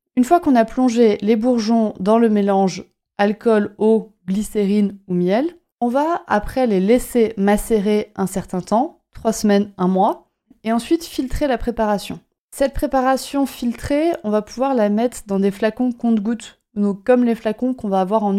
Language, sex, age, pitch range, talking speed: French, female, 30-49, 195-240 Hz, 175 wpm